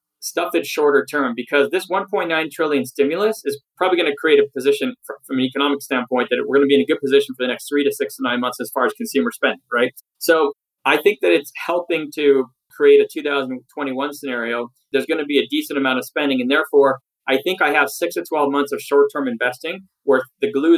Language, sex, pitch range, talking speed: English, male, 130-165 Hz, 230 wpm